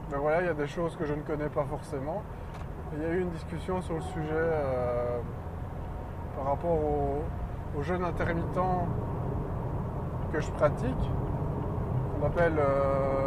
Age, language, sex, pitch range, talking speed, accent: 20-39, French, male, 90-145 Hz, 155 wpm, French